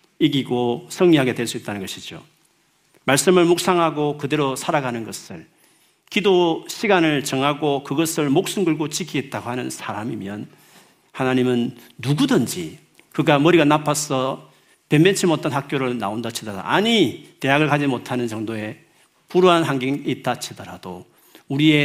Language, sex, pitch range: Korean, male, 120-160 Hz